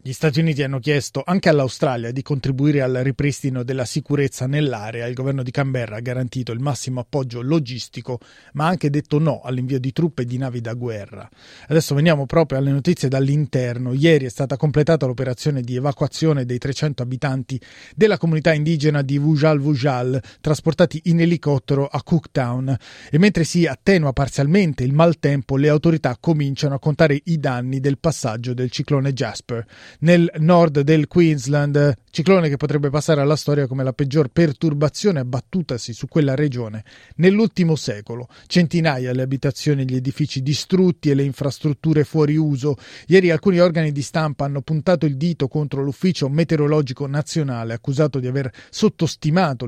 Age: 30-49